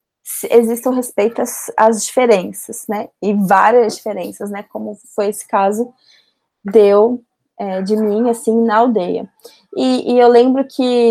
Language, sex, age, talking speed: Portuguese, female, 20-39, 130 wpm